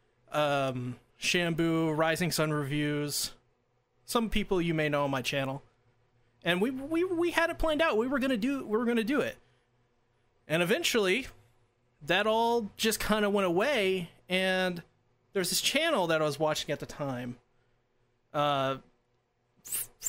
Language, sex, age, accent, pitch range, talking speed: English, male, 30-49, American, 130-190 Hz, 150 wpm